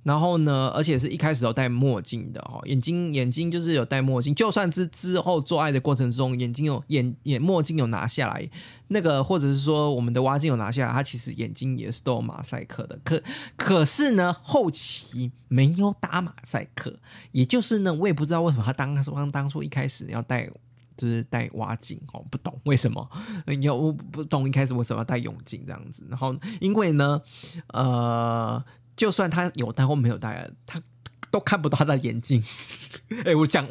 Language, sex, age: Chinese, male, 20-39